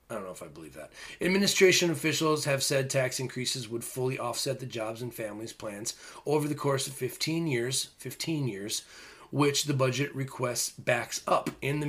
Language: English